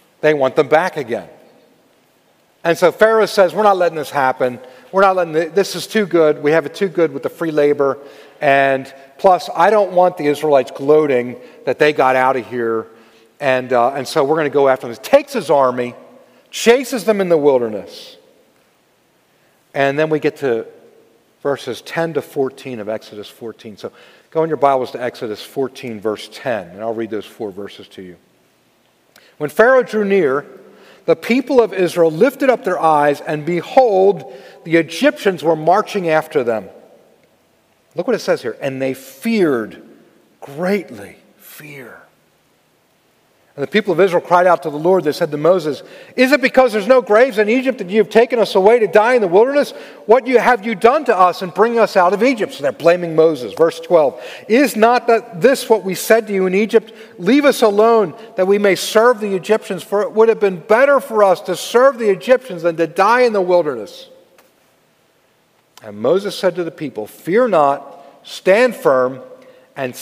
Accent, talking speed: American, 190 wpm